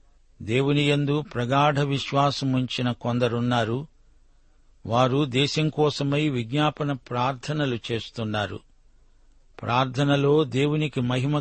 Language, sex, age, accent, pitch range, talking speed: Telugu, male, 60-79, native, 120-145 Hz, 70 wpm